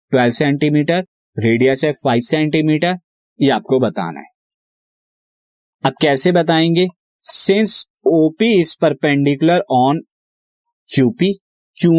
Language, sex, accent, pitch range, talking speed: Hindi, male, native, 125-165 Hz, 100 wpm